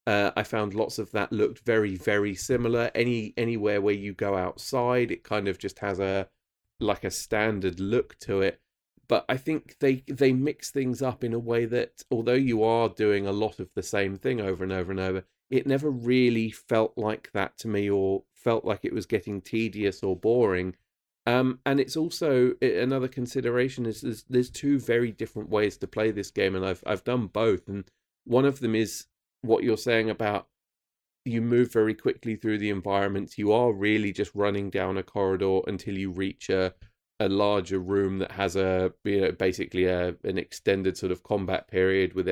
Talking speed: 195 wpm